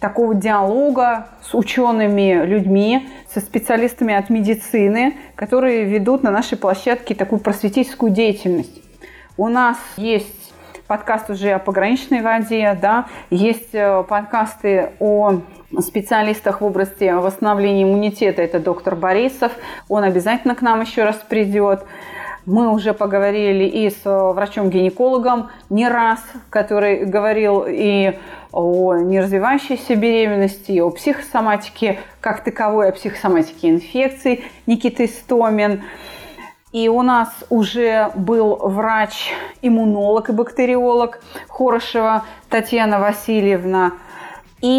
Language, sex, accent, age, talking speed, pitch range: Russian, female, native, 30-49, 105 wpm, 200-240 Hz